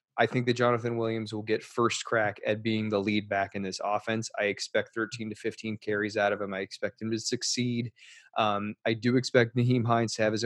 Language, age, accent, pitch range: English, 20-39, American, 105-115 Hz